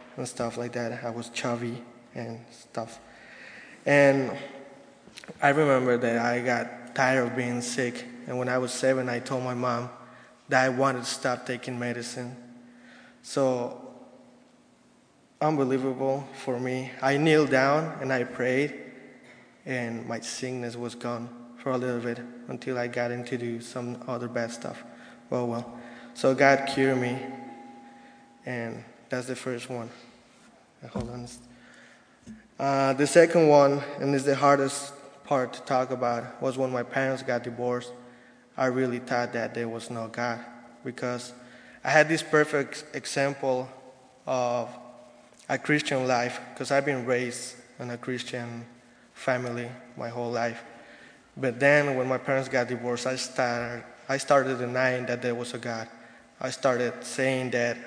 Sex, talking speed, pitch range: male, 145 wpm, 120-130 Hz